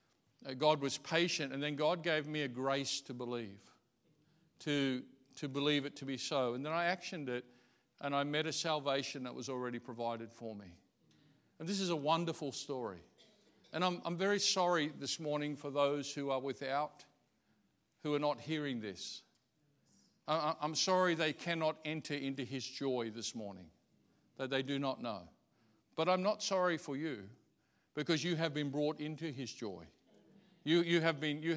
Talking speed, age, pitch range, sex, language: 170 wpm, 50-69, 135-165 Hz, male, English